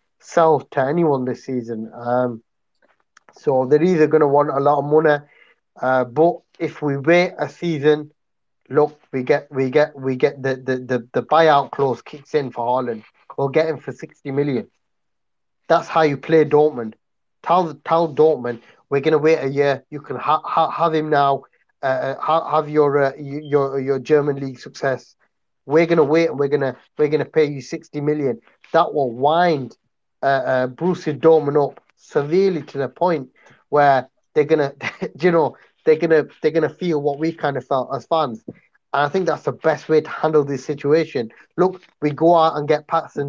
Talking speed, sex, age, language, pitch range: 195 wpm, male, 30-49, English, 135-160 Hz